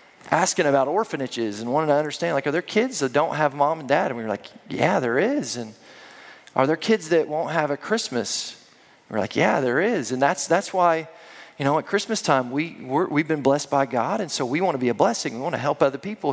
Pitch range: 145-195 Hz